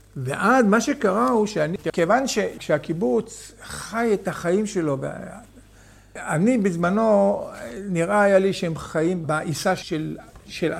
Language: Hebrew